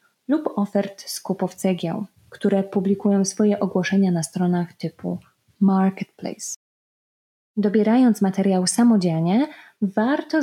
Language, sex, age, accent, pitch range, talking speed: Polish, female, 20-39, native, 185-225 Hz, 90 wpm